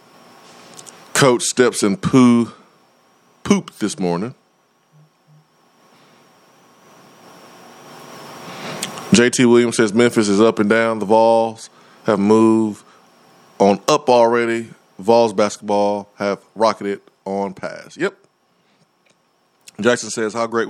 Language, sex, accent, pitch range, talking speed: English, male, American, 105-125 Hz, 95 wpm